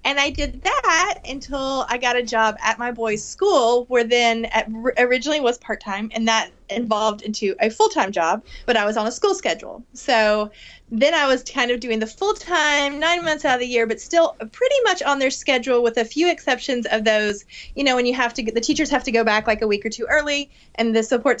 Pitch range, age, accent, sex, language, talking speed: 220-285 Hz, 30-49, American, female, English, 230 wpm